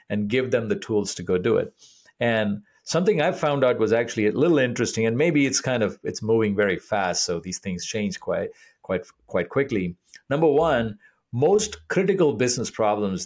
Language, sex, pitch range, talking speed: English, male, 105-140 Hz, 190 wpm